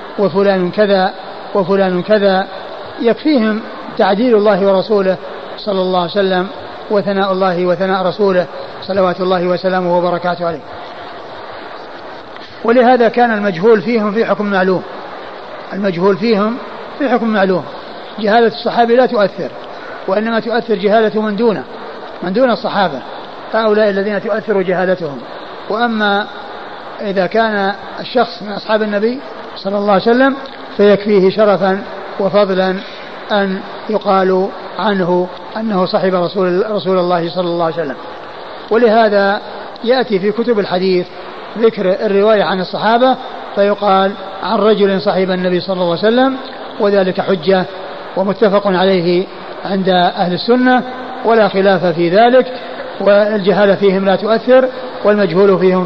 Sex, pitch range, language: male, 185-215 Hz, Arabic